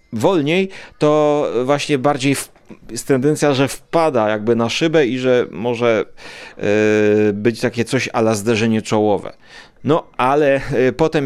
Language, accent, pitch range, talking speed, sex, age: Polish, native, 110-135 Hz, 125 wpm, male, 30-49